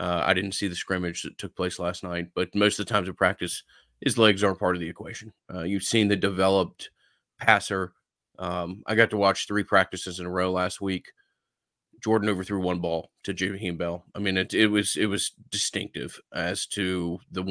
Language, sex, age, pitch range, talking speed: English, male, 30-49, 90-105 Hz, 210 wpm